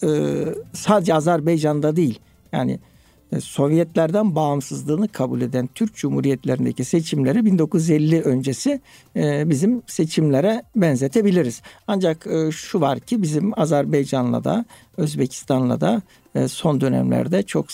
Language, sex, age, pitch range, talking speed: Turkish, male, 60-79, 135-190 Hz, 95 wpm